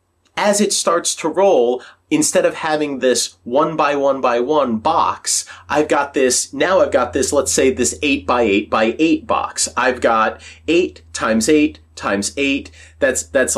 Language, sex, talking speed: English, male, 175 wpm